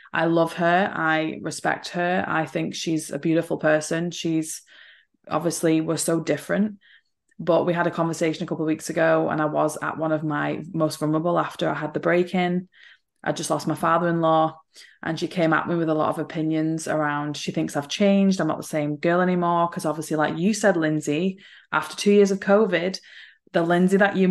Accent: British